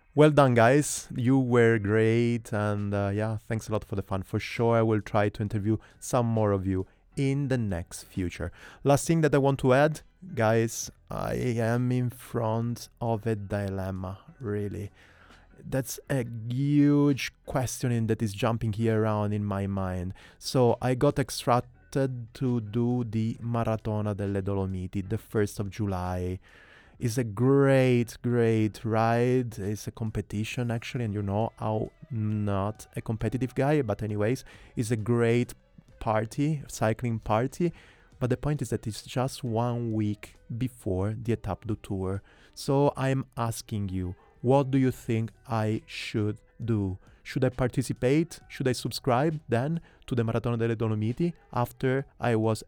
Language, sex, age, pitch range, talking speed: English, male, 30-49, 105-130 Hz, 155 wpm